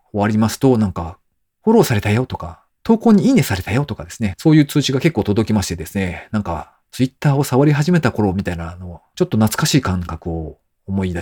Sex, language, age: male, Japanese, 40-59